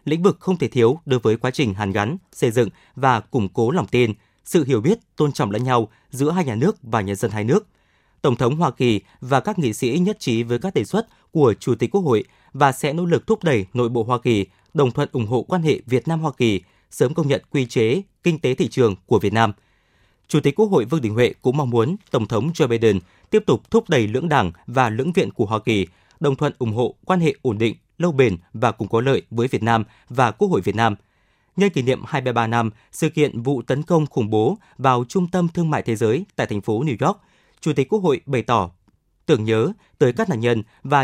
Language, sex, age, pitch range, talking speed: Vietnamese, male, 20-39, 115-155 Hz, 250 wpm